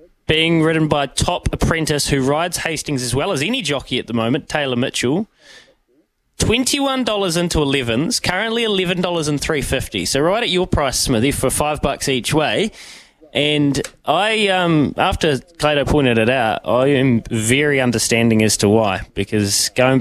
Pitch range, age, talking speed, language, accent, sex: 115-150 Hz, 20-39, 155 wpm, English, Australian, male